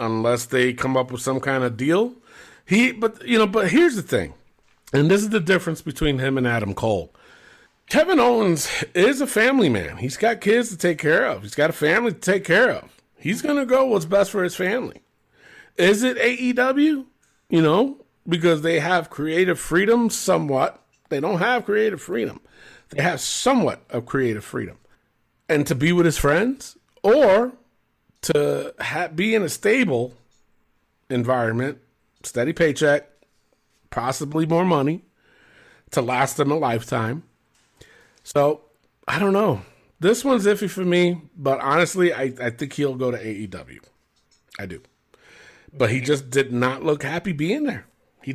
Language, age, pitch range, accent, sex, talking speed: English, 40-59, 135-215 Hz, American, male, 165 wpm